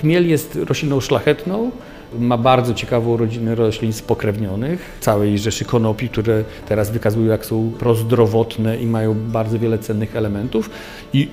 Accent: native